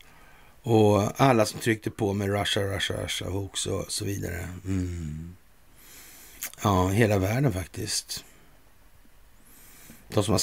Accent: native